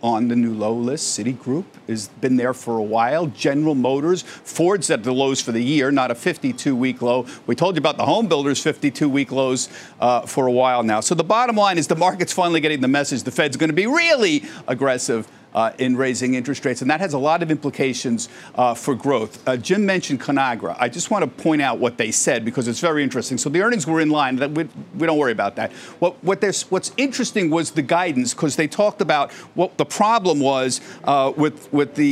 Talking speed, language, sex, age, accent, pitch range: 225 wpm, English, male, 50-69, American, 135-215 Hz